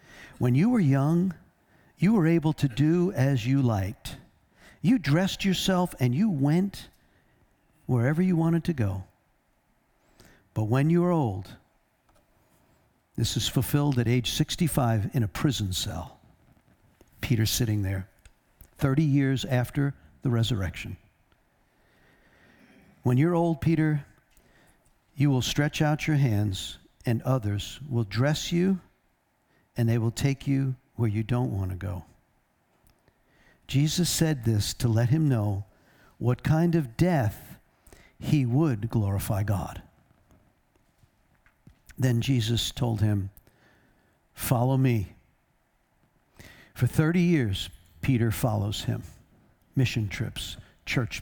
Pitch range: 105-150 Hz